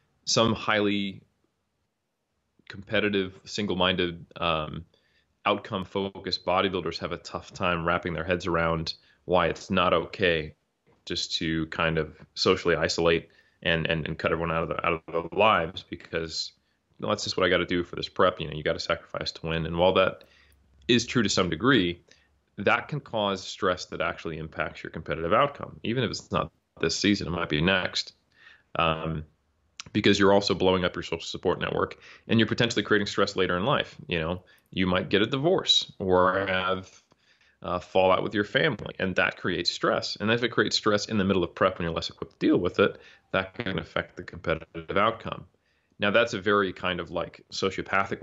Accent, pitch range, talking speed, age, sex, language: American, 80-100 Hz, 185 wpm, 30-49, male, English